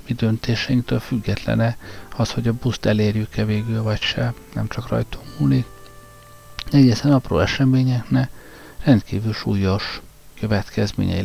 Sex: male